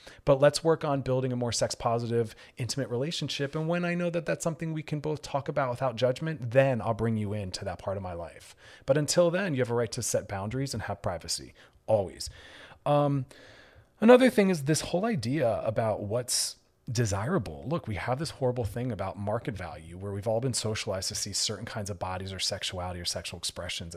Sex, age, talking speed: male, 30-49, 210 wpm